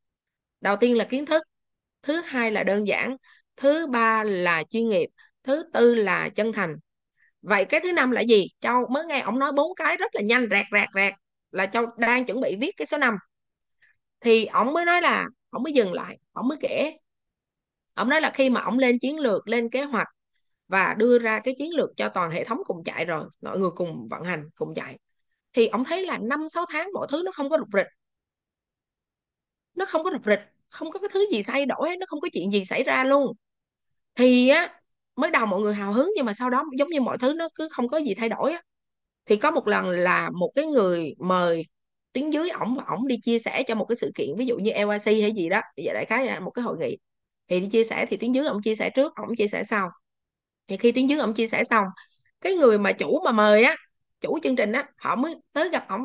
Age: 20-39